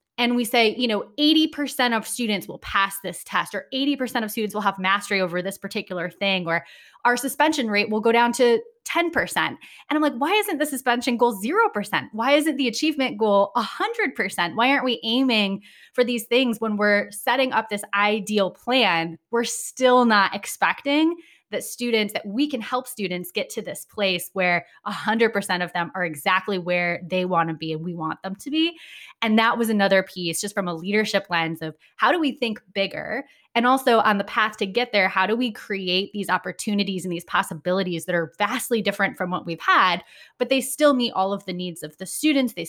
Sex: female